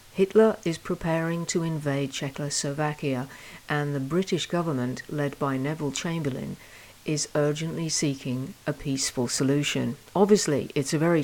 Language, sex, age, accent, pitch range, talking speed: English, female, 50-69, British, 135-175 Hz, 130 wpm